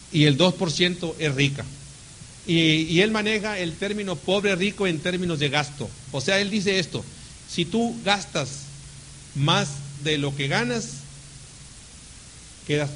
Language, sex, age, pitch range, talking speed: Spanish, male, 40-59, 140-195 Hz, 145 wpm